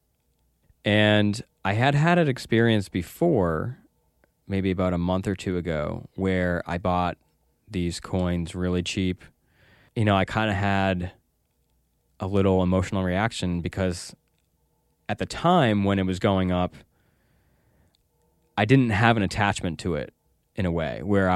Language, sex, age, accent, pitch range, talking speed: English, male, 20-39, American, 90-115 Hz, 145 wpm